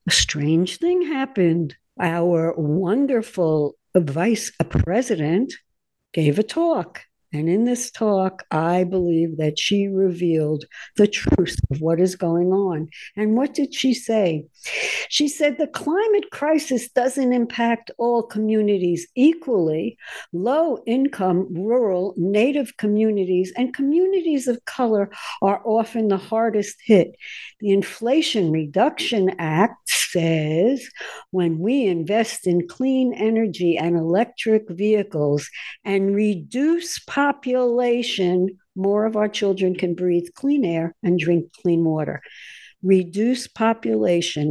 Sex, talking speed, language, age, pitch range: female, 115 wpm, English, 60-79, 175-245 Hz